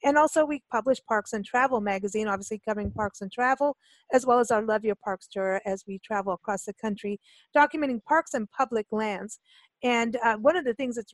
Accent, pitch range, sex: American, 210-265 Hz, female